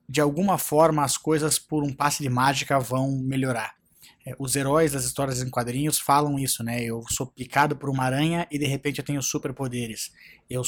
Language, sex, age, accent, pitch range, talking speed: Portuguese, male, 20-39, Brazilian, 135-165 Hz, 190 wpm